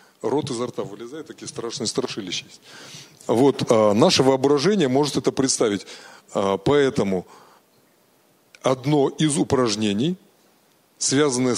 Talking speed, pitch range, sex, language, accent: 110 wpm, 115-150 Hz, male, Russian, native